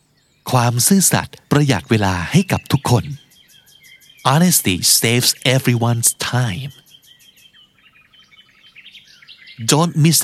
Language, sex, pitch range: Thai, male, 125-150 Hz